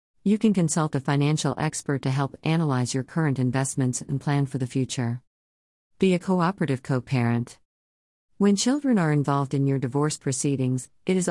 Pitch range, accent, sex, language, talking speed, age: 130-160 Hz, American, female, English, 165 wpm, 50-69